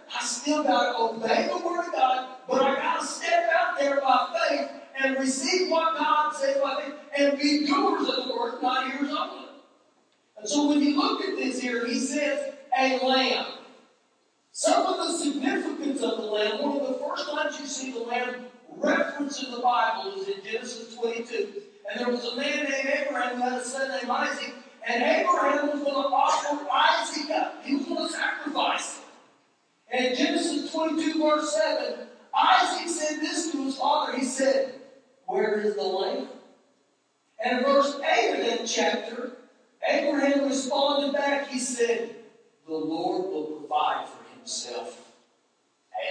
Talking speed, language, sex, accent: 170 wpm, English, male, American